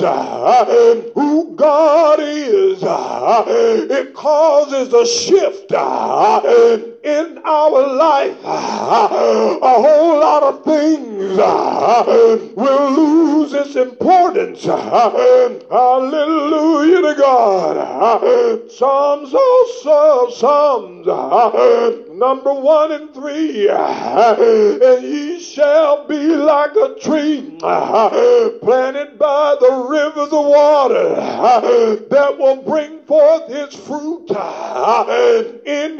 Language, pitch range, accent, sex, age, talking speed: English, 290-430 Hz, American, male, 60-79, 80 wpm